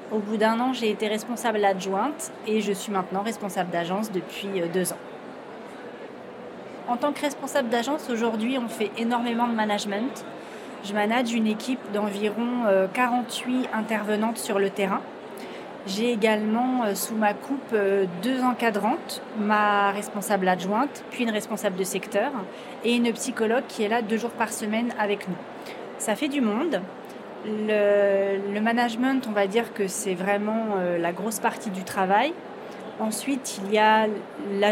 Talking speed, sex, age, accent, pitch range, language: 155 wpm, female, 30-49, French, 200-230 Hz, French